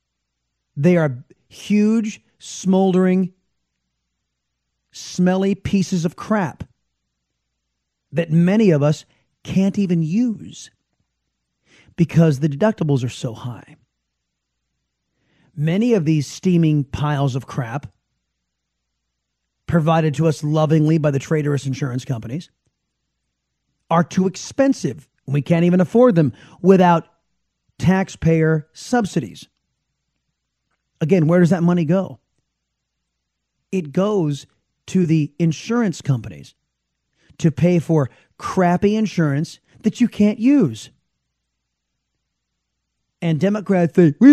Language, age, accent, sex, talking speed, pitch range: English, 30-49, American, male, 100 wpm, 130-195 Hz